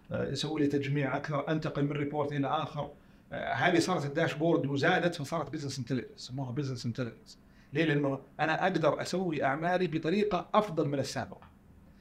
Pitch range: 135-175 Hz